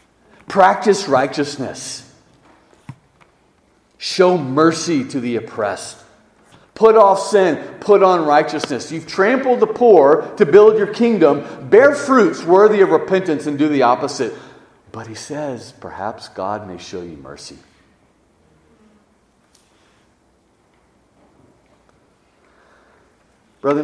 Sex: male